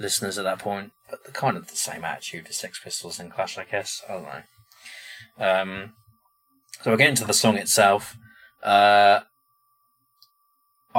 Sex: male